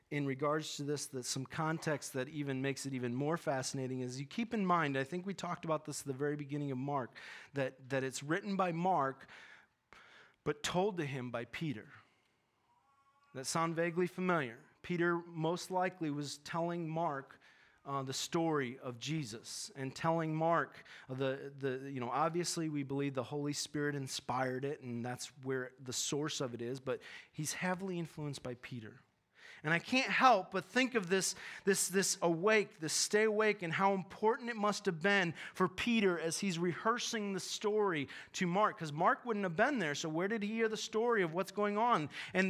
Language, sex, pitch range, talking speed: English, male, 145-200 Hz, 190 wpm